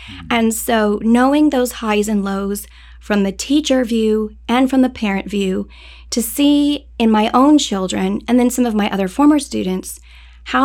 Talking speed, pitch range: 175 wpm, 195-245 Hz